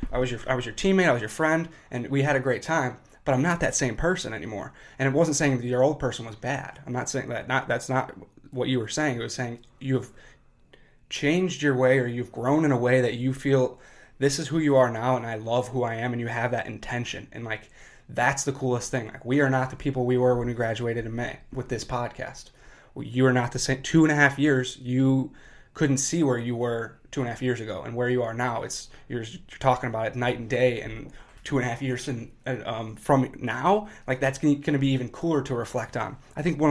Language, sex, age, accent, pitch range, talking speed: English, male, 20-39, American, 120-135 Hz, 260 wpm